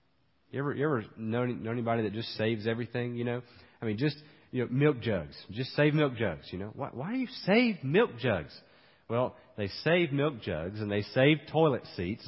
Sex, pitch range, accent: male, 105-135 Hz, American